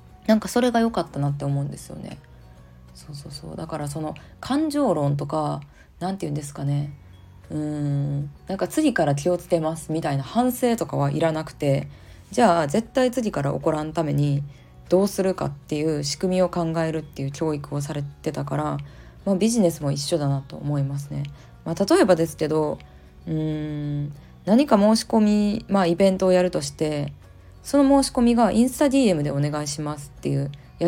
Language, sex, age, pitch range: Japanese, female, 20-39, 140-200 Hz